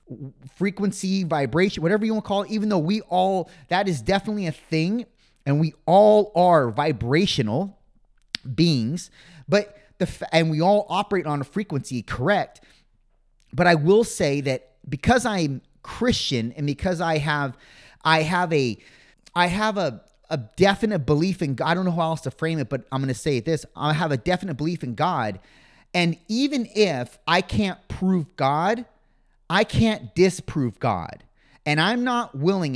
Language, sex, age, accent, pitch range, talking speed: English, male, 30-49, American, 135-185 Hz, 170 wpm